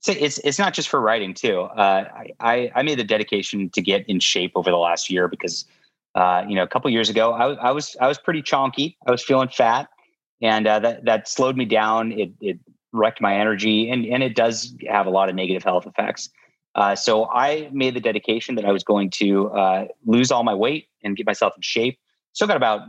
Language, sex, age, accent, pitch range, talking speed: English, male, 30-49, American, 95-120 Hz, 240 wpm